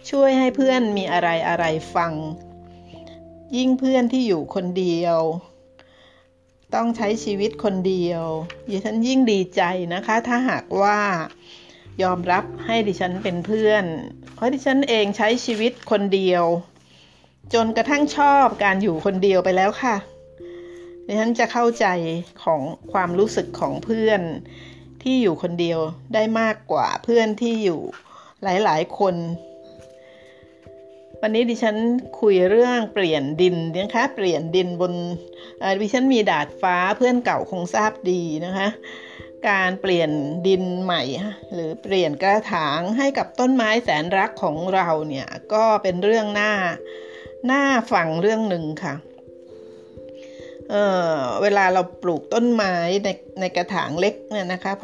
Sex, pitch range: female, 165-220 Hz